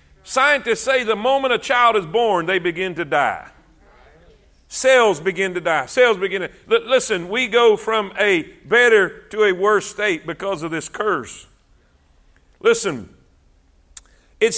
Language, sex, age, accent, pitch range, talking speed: English, male, 50-69, American, 185-245 Hz, 150 wpm